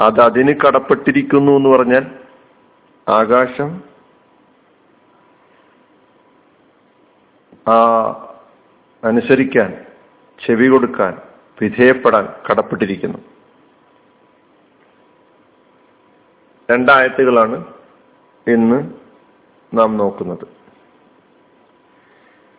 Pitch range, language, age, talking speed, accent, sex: 120-135 Hz, Malayalam, 50-69, 35 wpm, native, male